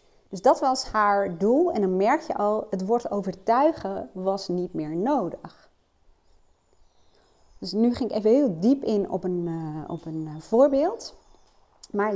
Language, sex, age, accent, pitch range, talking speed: Dutch, female, 40-59, Dutch, 185-260 Hz, 150 wpm